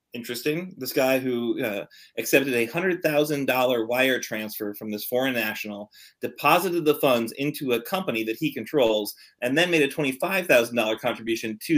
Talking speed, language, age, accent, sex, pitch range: 175 wpm, English, 30-49, American, male, 110-135 Hz